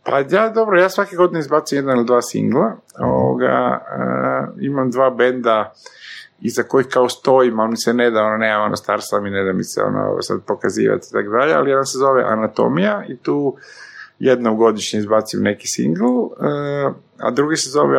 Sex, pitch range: male, 115-150 Hz